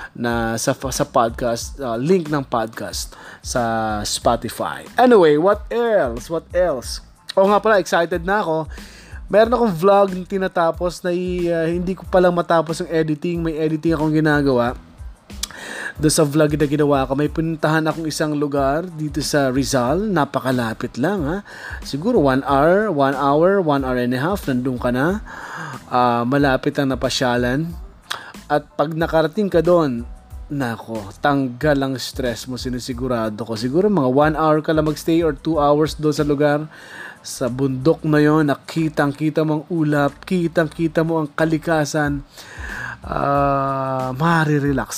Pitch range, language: 135-165 Hz, Filipino